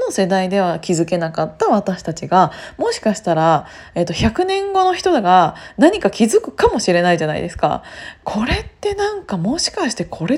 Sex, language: female, Japanese